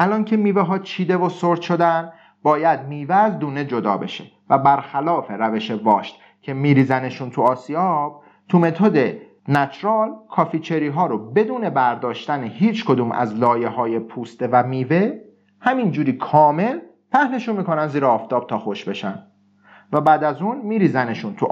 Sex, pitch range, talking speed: male, 125-185 Hz, 150 wpm